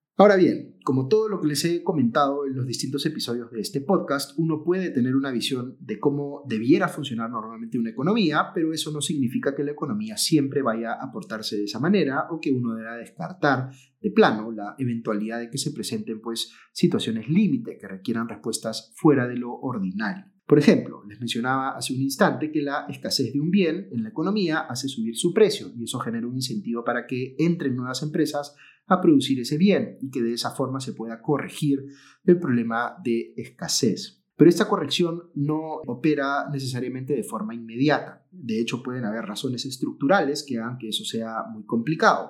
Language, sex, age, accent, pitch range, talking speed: Spanish, male, 30-49, Argentinian, 115-160 Hz, 185 wpm